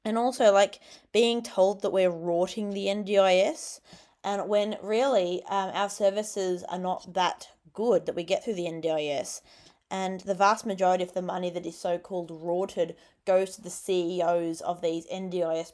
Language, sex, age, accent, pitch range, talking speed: English, female, 20-39, Australian, 175-200 Hz, 170 wpm